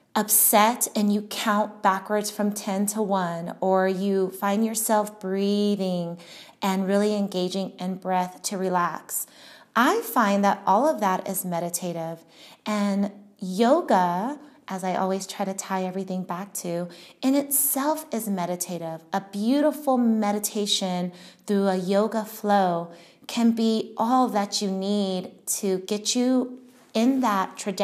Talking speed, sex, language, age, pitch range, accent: 135 wpm, female, English, 30-49, 185-225 Hz, American